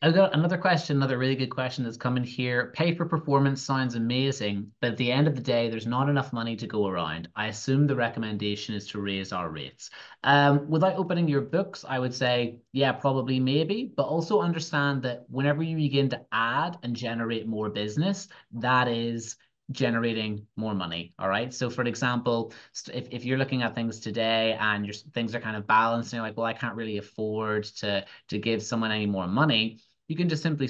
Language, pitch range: English, 105-130 Hz